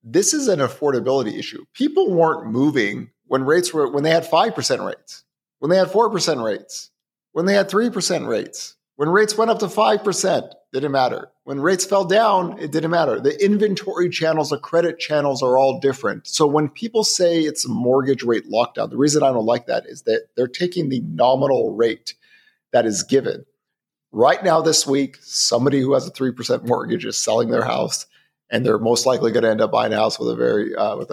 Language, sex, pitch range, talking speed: English, male, 130-200 Hz, 200 wpm